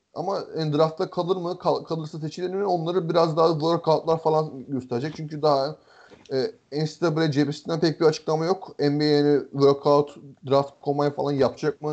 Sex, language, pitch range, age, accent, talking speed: male, Turkish, 150-175 Hz, 30-49, native, 155 wpm